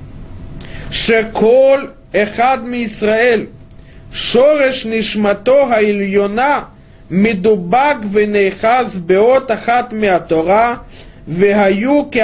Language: Russian